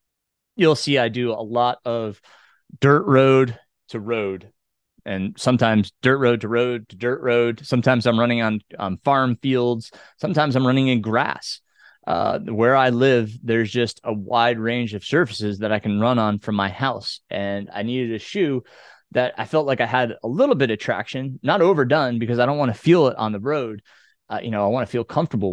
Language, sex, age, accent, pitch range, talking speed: English, male, 30-49, American, 110-130 Hz, 205 wpm